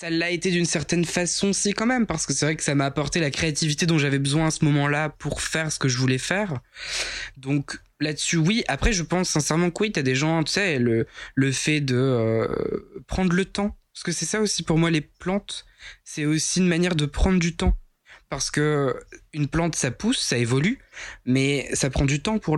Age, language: 20-39, French